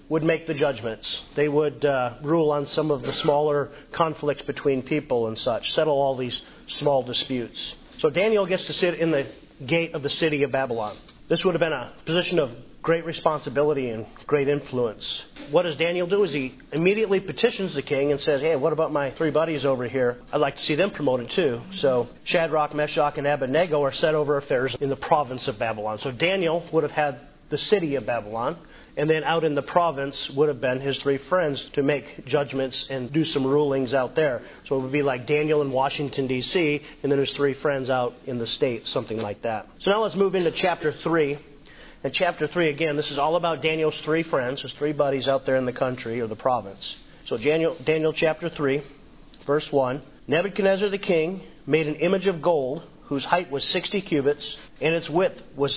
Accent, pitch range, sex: American, 135-165 Hz, male